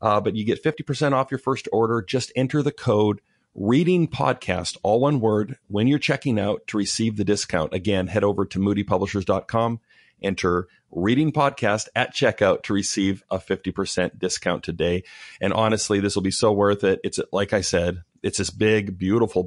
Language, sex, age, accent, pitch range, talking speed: English, male, 40-59, American, 95-125 Hz, 180 wpm